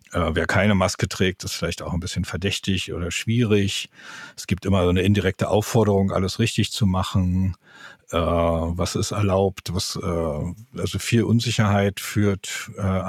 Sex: male